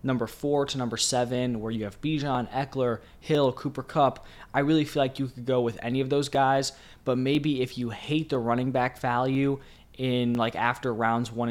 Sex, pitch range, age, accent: male, 110-135 Hz, 20-39, American